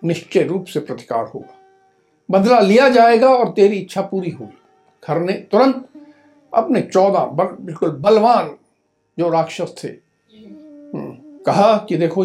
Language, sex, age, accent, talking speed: Hindi, male, 60-79, native, 125 wpm